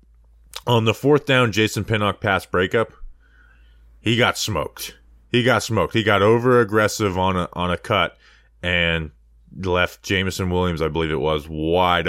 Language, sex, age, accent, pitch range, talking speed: English, male, 20-39, American, 85-120 Hz, 160 wpm